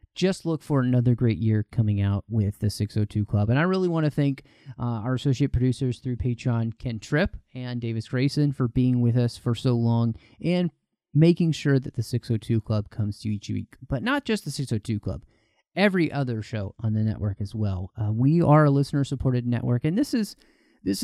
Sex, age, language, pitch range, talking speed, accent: male, 30-49, English, 110-140 Hz, 205 wpm, American